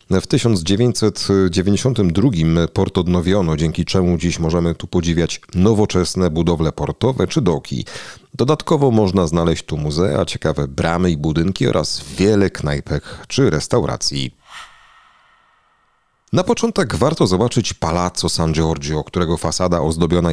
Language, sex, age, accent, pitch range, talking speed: Polish, male, 40-59, native, 80-100 Hz, 115 wpm